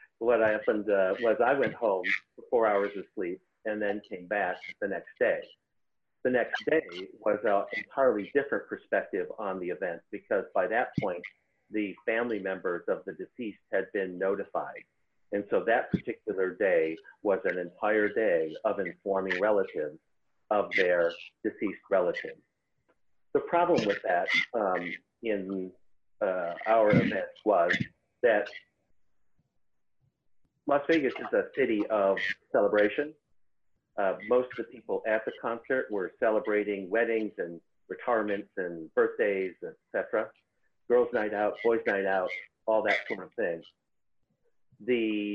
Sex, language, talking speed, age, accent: male, English, 140 wpm, 50-69, American